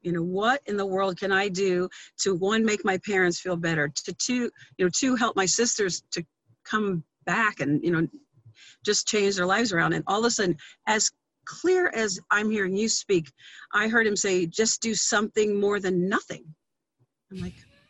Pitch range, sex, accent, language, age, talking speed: 180-225 Hz, female, American, English, 40-59, 200 wpm